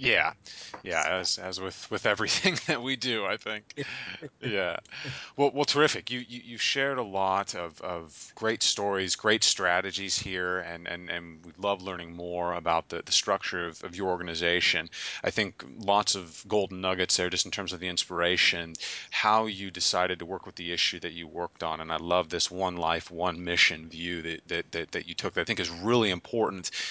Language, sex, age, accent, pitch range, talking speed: English, male, 30-49, American, 85-100 Hz, 200 wpm